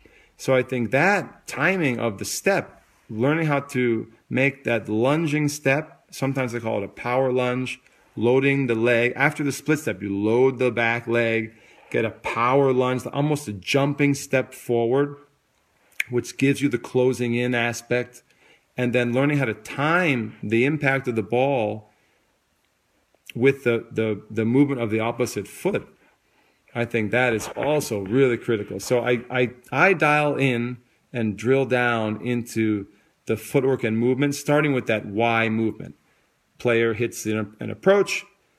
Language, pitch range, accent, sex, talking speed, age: English, 110-135 Hz, American, male, 155 wpm, 40-59